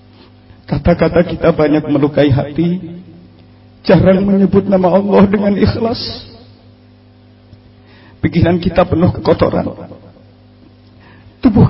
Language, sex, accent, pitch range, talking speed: English, male, Indonesian, 110-160 Hz, 80 wpm